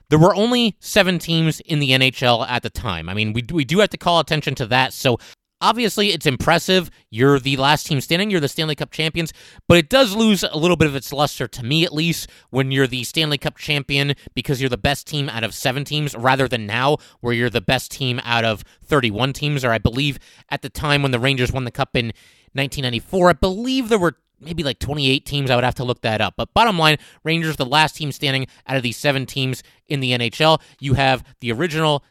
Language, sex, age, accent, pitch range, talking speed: English, male, 30-49, American, 130-160 Hz, 235 wpm